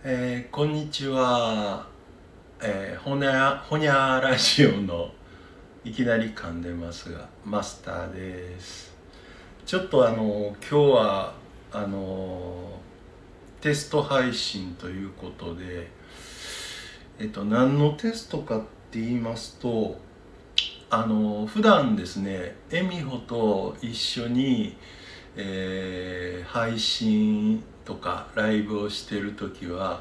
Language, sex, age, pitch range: Japanese, male, 60-79, 95-130 Hz